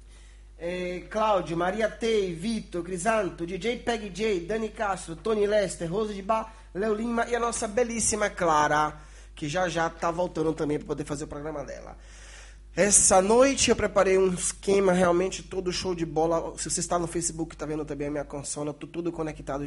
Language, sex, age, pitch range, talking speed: Italian, male, 20-39, 155-195 Hz, 175 wpm